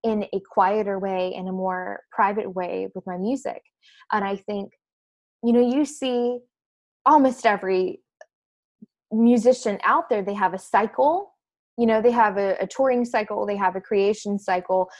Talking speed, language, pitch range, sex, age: 165 wpm, English, 190-240 Hz, female, 20-39